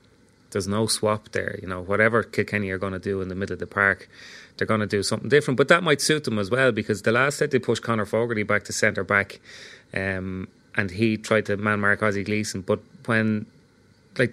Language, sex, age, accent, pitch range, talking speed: English, male, 30-49, Irish, 100-115 Hz, 220 wpm